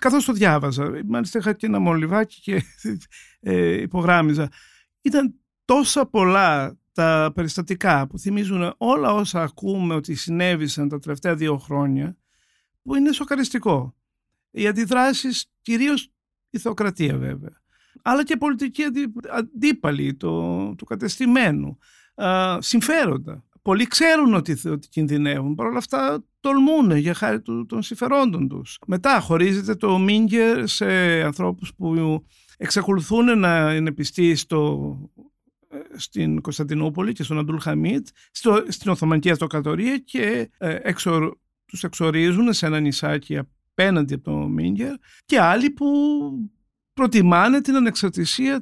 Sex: male